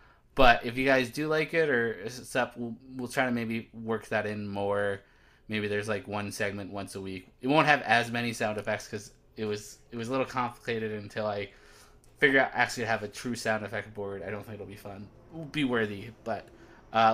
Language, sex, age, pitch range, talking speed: English, male, 20-39, 105-125 Hz, 225 wpm